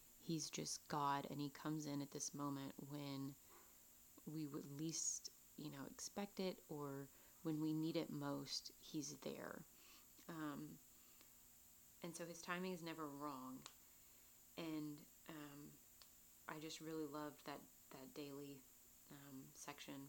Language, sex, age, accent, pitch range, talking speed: English, female, 30-49, American, 140-155 Hz, 135 wpm